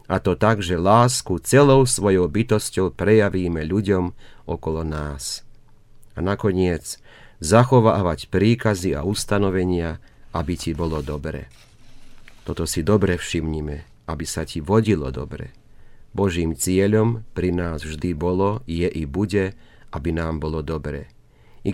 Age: 40-59